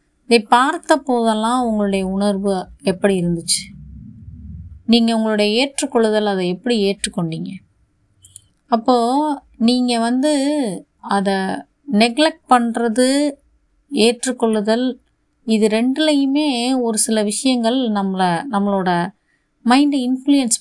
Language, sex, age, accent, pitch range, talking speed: Tamil, female, 30-49, native, 180-235 Hz, 85 wpm